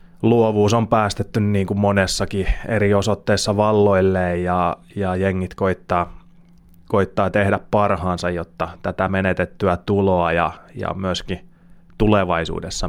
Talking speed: 110 wpm